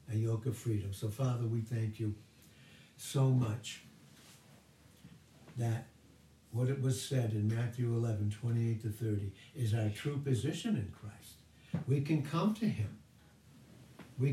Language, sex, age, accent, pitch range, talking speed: English, male, 60-79, American, 110-135 Hz, 140 wpm